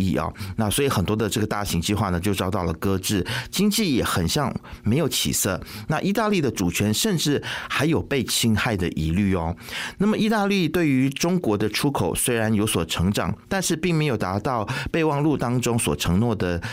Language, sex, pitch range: Chinese, male, 100-140 Hz